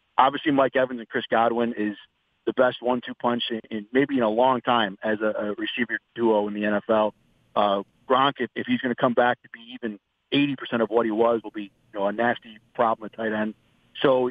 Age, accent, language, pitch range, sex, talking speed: 40-59, American, English, 110-130 Hz, male, 235 wpm